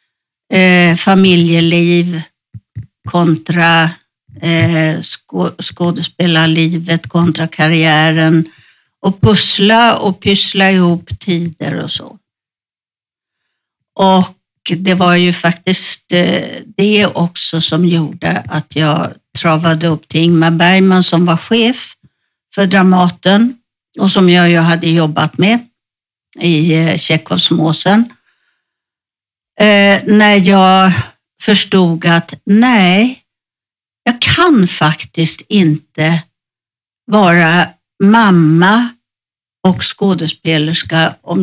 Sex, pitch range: female, 165-195 Hz